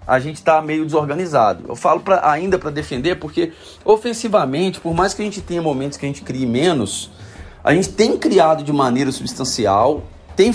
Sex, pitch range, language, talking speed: male, 140-195 Hz, Portuguese, 190 wpm